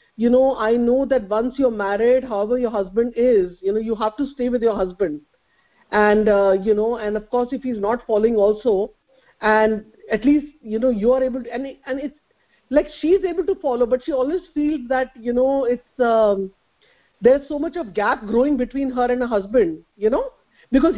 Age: 50-69